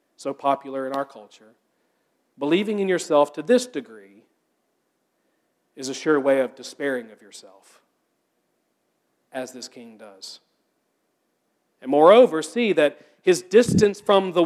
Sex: male